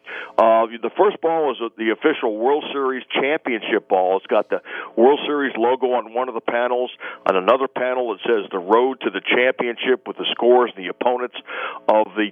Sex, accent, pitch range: male, American, 110-130 Hz